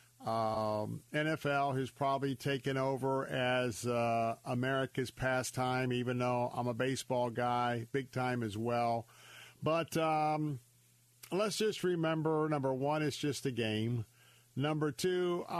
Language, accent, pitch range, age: English, American, 120-145 Hz, 50-69